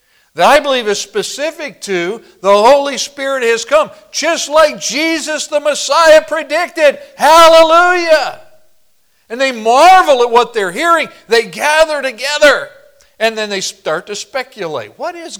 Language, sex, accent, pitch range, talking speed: English, male, American, 215-300 Hz, 140 wpm